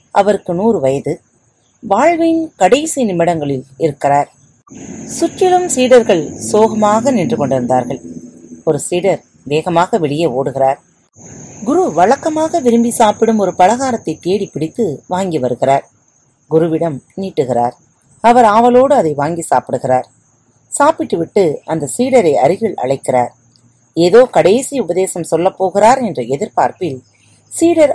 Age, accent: 30-49, native